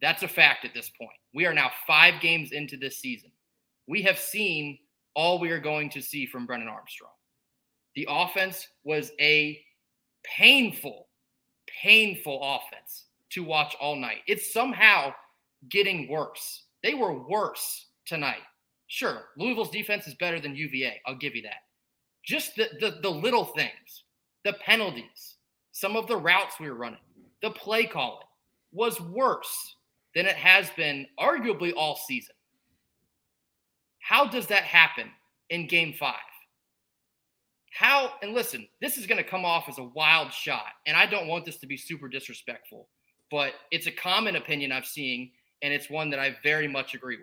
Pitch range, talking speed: 145-210 Hz, 165 wpm